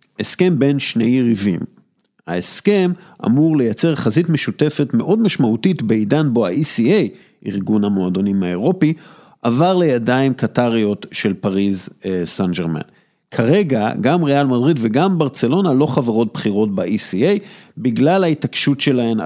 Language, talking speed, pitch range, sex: Hebrew, 110 wpm, 105-150 Hz, male